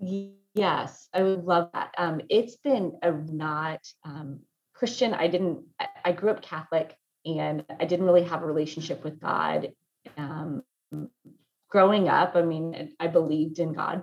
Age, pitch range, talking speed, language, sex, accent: 30-49, 155-180 Hz, 155 wpm, English, female, American